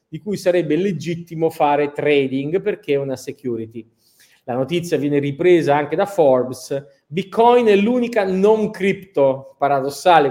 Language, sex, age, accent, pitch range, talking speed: Italian, male, 40-59, native, 140-205 Hz, 135 wpm